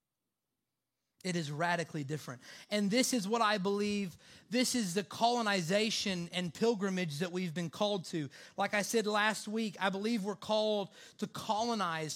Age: 30-49